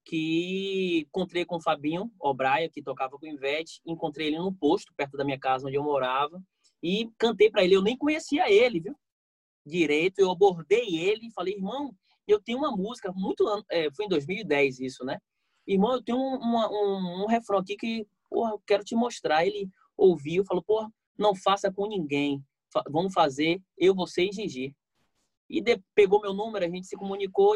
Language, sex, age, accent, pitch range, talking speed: Portuguese, male, 20-39, Brazilian, 145-200 Hz, 185 wpm